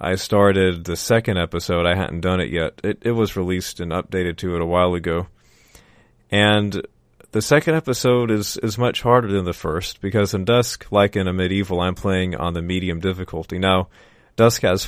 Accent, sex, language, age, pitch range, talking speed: American, male, English, 30-49, 85-100 Hz, 195 wpm